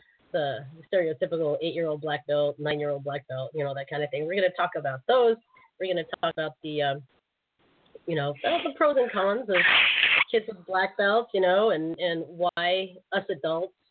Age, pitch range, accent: 30-49, 155-220 Hz, American